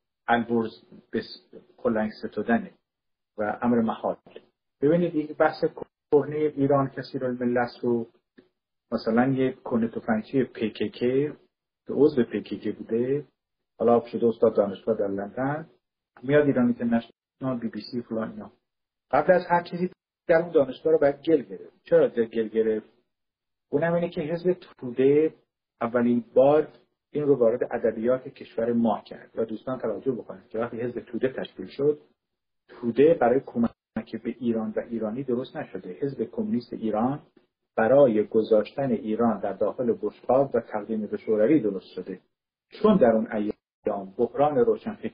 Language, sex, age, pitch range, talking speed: Persian, male, 50-69, 110-145 Hz, 150 wpm